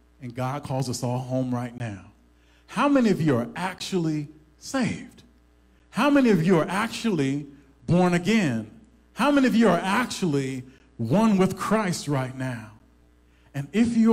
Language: English